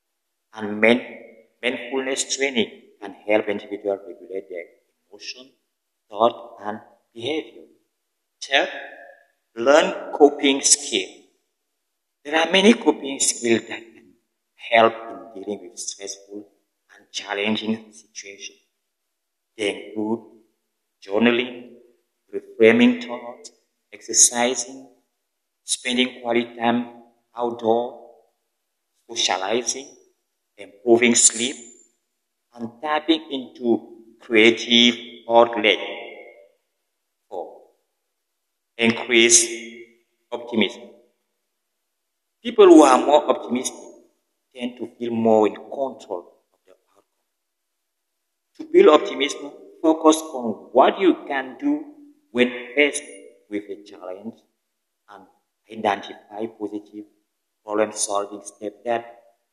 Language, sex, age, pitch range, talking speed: French, male, 50-69, 110-145 Hz, 85 wpm